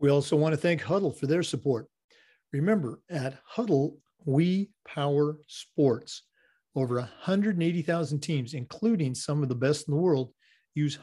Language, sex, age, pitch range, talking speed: English, male, 50-69, 130-170 Hz, 145 wpm